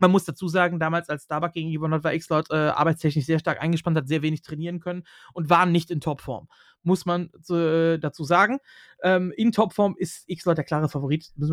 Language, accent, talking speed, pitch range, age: German, German, 220 wpm, 175-235 Hz, 30-49